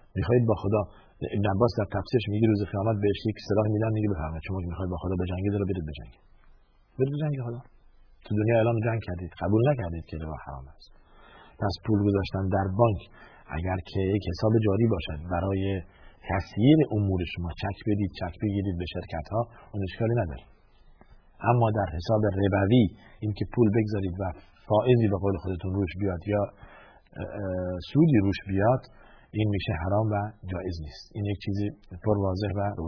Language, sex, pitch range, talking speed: Persian, male, 90-110 Hz, 160 wpm